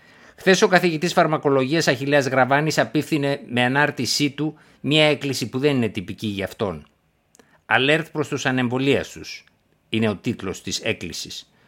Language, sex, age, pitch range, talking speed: Greek, male, 60-79, 110-145 Hz, 140 wpm